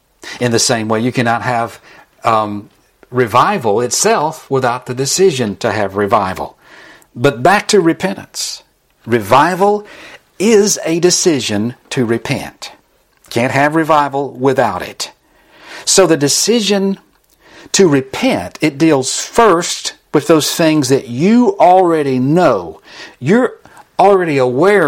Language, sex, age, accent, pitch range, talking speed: English, male, 60-79, American, 120-165 Hz, 120 wpm